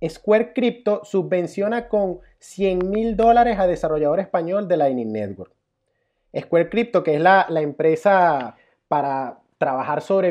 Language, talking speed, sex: Spanish, 135 wpm, male